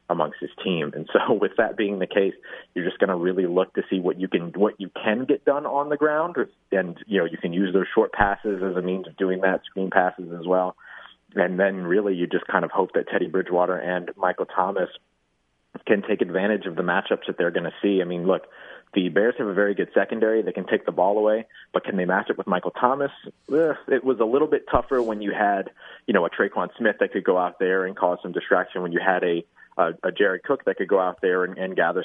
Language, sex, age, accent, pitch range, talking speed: English, male, 30-49, American, 90-105 Hz, 255 wpm